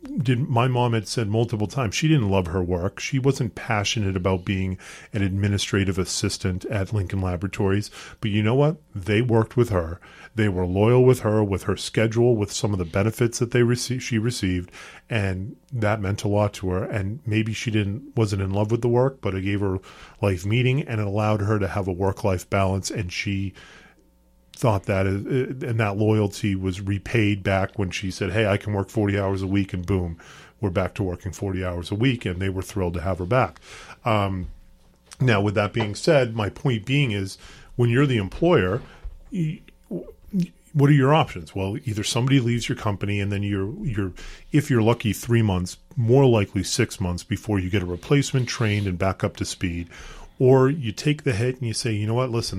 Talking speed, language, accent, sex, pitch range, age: 210 wpm, English, American, male, 95-120 Hz, 40-59